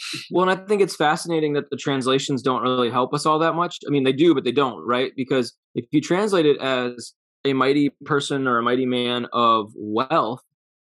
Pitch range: 110-140 Hz